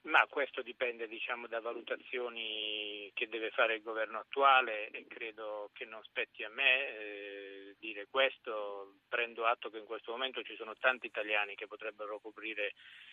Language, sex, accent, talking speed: Italian, male, native, 160 wpm